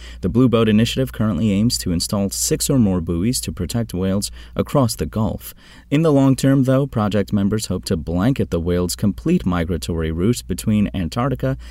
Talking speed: 180 wpm